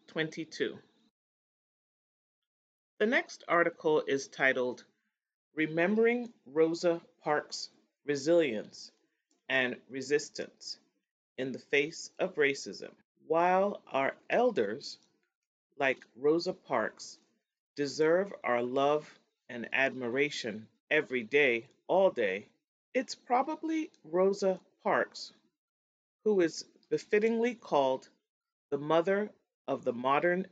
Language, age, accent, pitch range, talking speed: English, 40-59, American, 145-205 Hz, 90 wpm